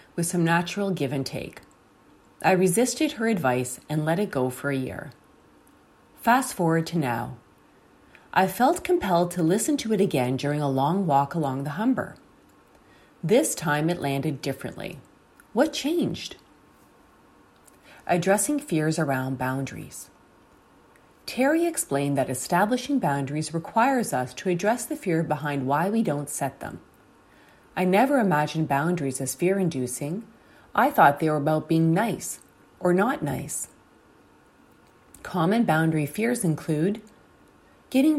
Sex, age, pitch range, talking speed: female, 30-49, 140-215 Hz, 135 wpm